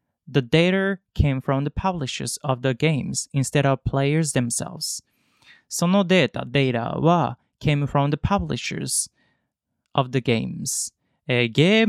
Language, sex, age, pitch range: Japanese, male, 20-39, 130-170 Hz